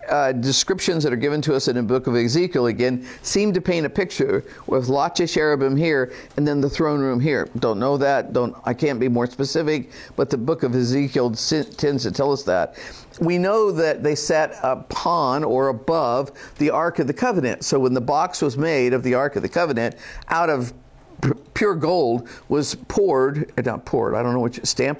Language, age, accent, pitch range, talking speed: English, 50-69, American, 130-165 Hz, 205 wpm